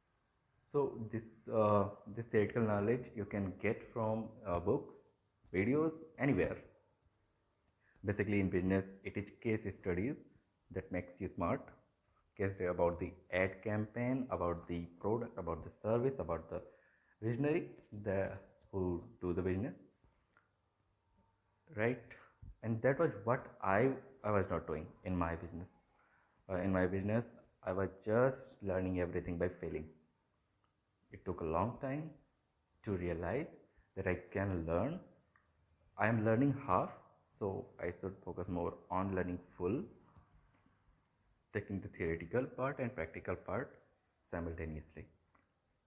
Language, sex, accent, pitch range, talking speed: Hindi, male, native, 90-110 Hz, 130 wpm